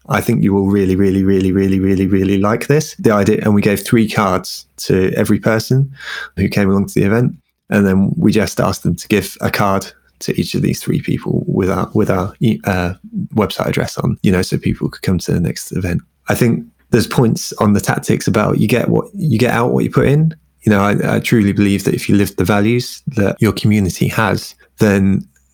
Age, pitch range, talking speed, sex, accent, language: 20-39, 95-115 Hz, 230 wpm, male, British, English